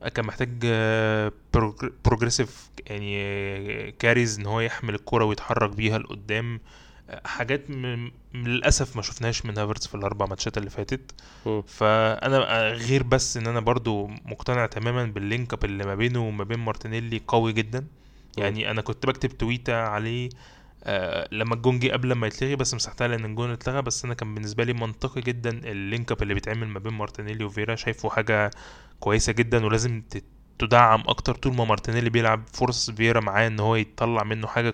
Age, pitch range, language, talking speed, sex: 20-39, 110-125 Hz, Arabic, 155 wpm, male